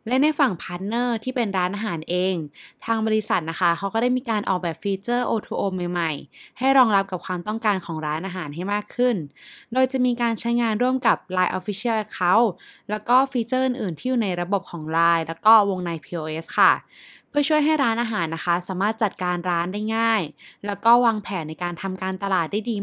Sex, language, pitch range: female, Thai, 170-225 Hz